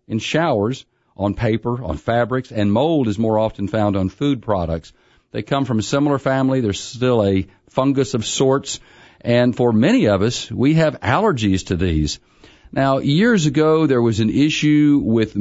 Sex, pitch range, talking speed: male, 100-125 Hz, 175 wpm